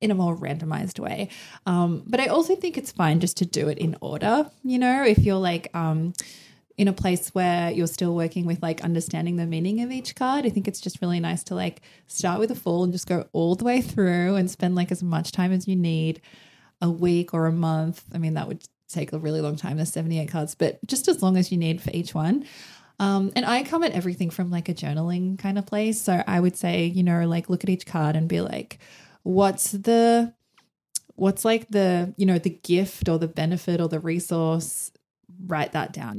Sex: female